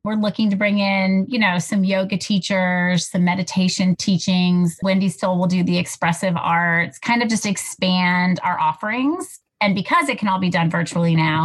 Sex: female